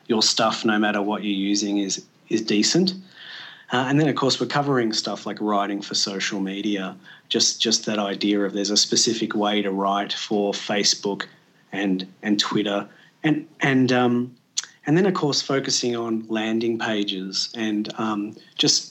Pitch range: 105-125 Hz